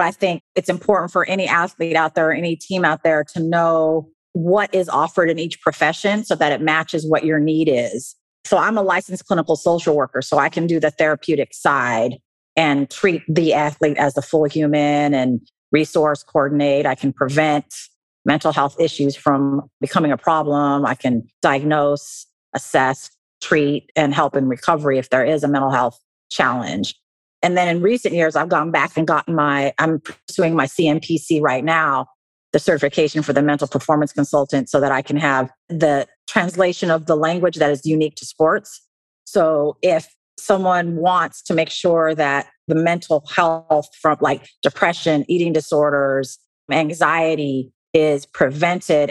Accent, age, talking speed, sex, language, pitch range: American, 40-59, 170 wpm, female, English, 145-170 Hz